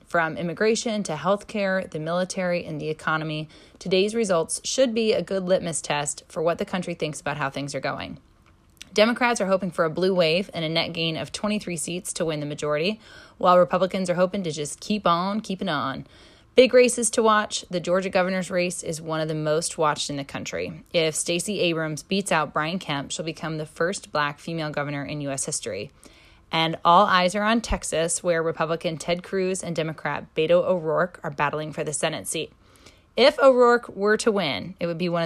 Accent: American